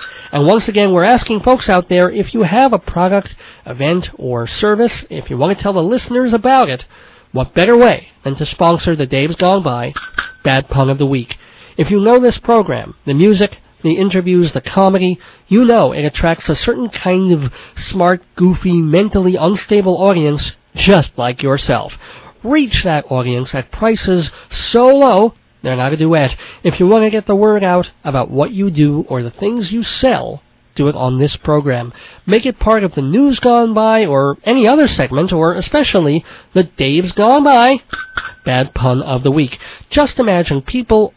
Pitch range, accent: 145-225 Hz, American